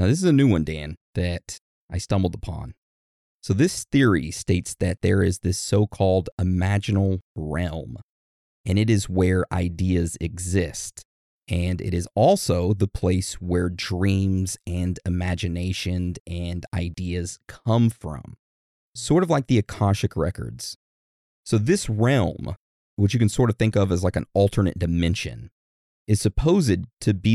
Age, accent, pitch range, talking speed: 30-49, American, 85-105 Hz, 145 wpm